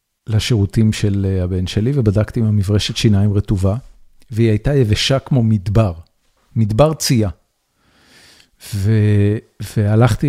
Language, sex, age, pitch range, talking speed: Hebrew, male, 50-69, 105-135 Hz, 105 wpm